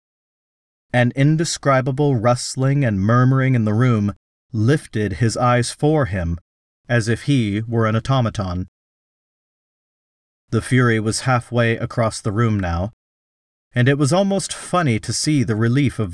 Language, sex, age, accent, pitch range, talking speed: English, male, 40-59, American, 90-125 Hz, 140 wpm